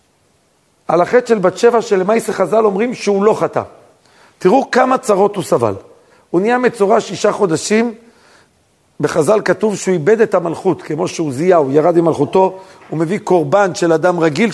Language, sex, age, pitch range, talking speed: Hebrew, male, 50-69, 195-260 Hz, 160 wpm